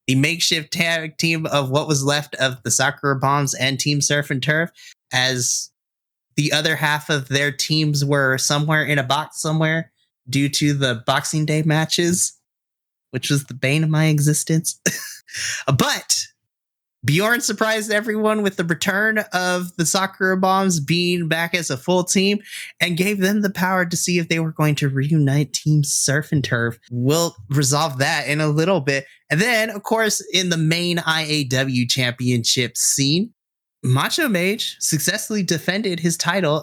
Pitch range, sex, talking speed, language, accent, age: 145-190 Hz, male, 165 wpm, English, American, 20-39